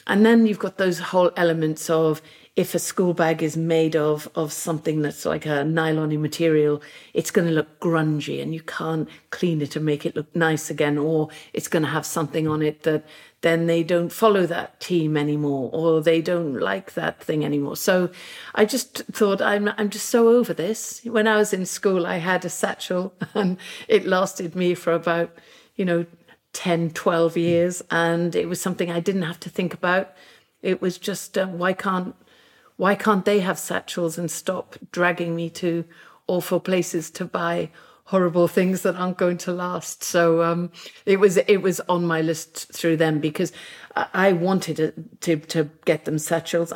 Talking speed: 190 wpm